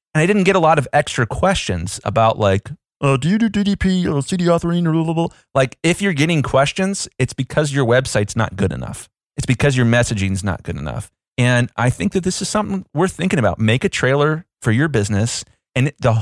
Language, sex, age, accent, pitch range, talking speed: English, male, 30-49, American, 110-160 Hz, 220 wpm